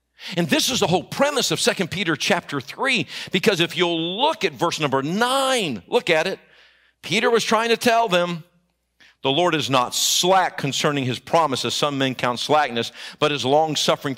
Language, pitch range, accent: English, 135-180 Hz, American